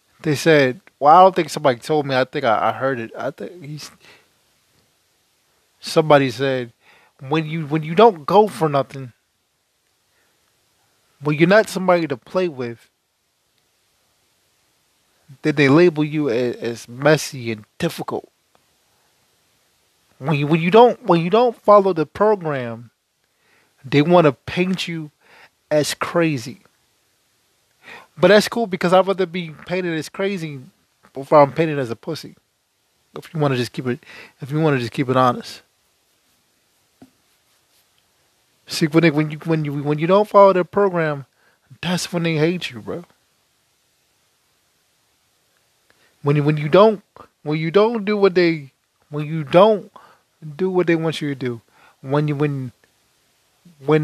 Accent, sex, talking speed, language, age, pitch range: American, male, 150 wpm, English, 20-39, 140-180 Hz